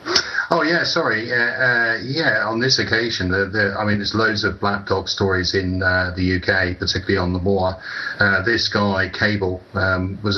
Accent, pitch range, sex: British, 95-110 Hz, male